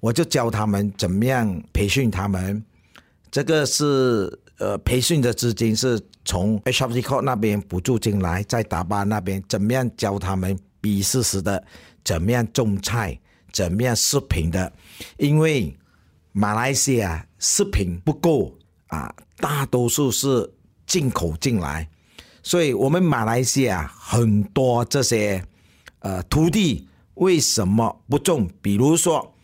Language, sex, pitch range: English, male, 95-130 Hz